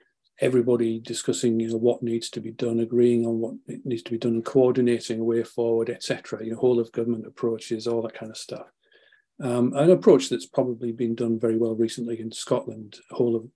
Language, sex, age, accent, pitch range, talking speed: English, male, 50-69, British, 115-125 Hz, 205 wpm